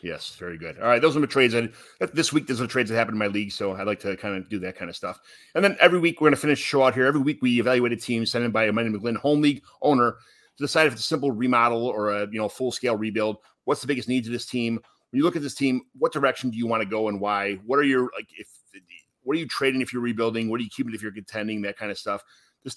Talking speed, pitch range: 310 wpm, 105-135 Hz